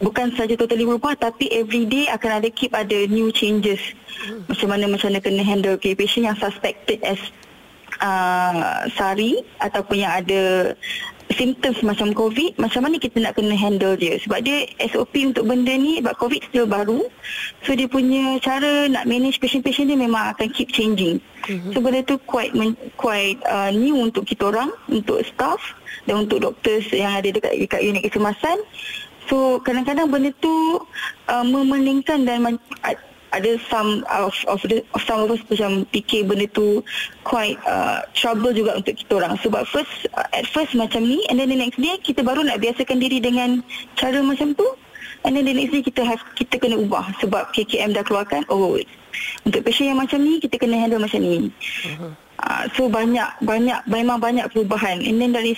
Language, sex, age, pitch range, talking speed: Malay, female, 20-39, 215-265 Hz, 180 wpm